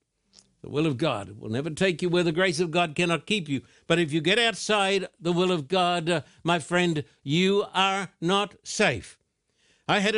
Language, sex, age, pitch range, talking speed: English, male, 60-79, 155-195 Hz, 200 wpm